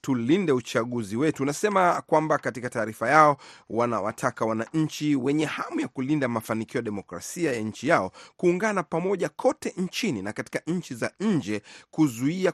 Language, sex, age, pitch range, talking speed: Swahili, male, 30-49, 120-155 Hz, 145 wpm